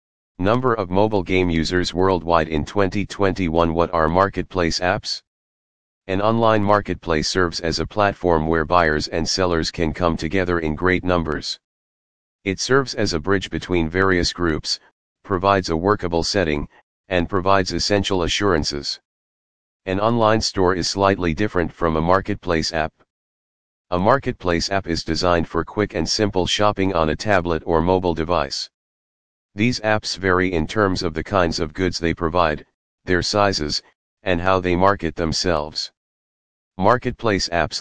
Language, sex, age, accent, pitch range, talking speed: English, male, 40-59, American, 80-100 Hz, 145 wpm